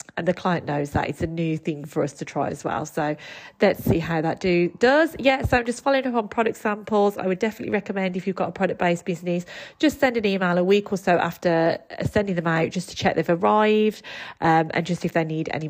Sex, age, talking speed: female, 30-49, 245 wpm